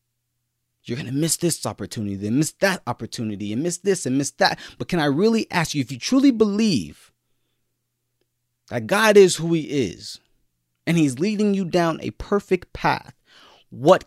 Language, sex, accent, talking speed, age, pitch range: English, male, American, 175 wpm, 30-49, 115-165 Hz